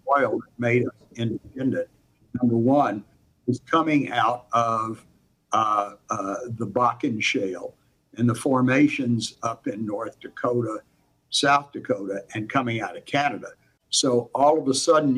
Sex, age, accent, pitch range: male, 60-79, American, 115-140 Hz